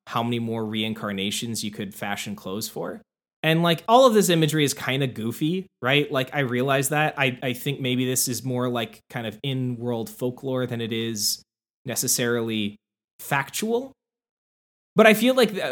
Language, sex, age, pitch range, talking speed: English, male, 20-39, 115-140 Hz, 170 wpm